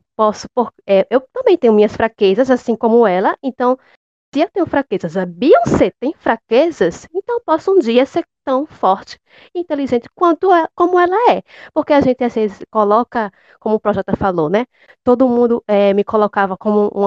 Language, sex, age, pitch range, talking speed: Portuguese, female, 10-29, 200-255 Hz, 185 wpm